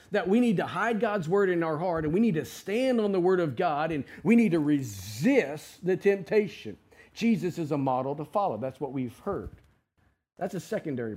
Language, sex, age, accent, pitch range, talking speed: English, male, 40-59, American, 135-185 Hz, 215 wpm